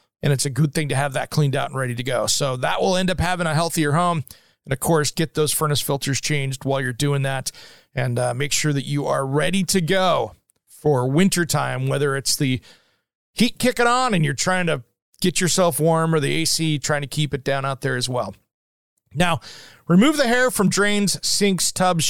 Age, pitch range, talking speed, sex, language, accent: 40-59, 140-180 Hz, 215 wpm, male, English, American